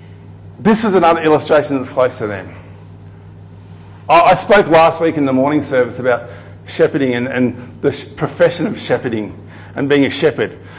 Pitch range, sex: 100-155 Hz, male